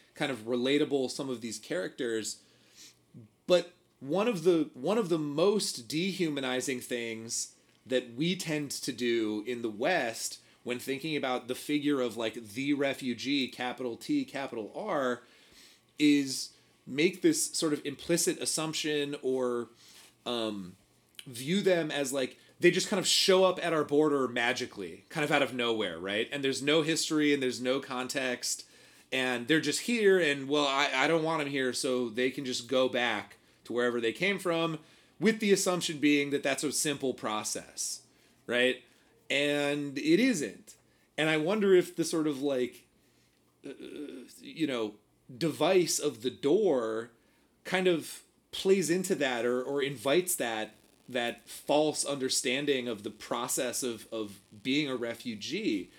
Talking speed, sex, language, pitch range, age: 155 wpm, male, English, 125-160 Hz, 30-49